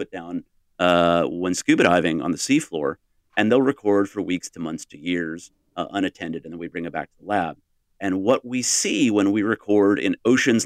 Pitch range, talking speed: 85-105 Hz, 210 wpm